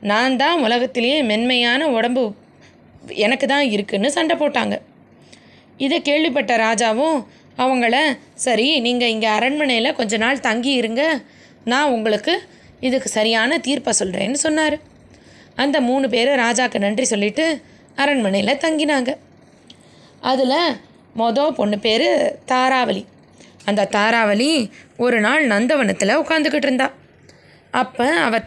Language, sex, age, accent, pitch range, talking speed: Tamil, female, 20-39, native, 220-285 Hz, 105 wpm